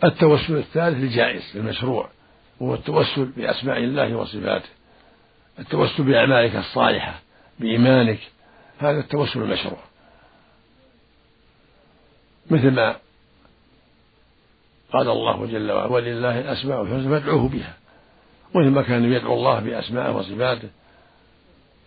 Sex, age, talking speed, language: male, 60-79, 90 wpm, Arabic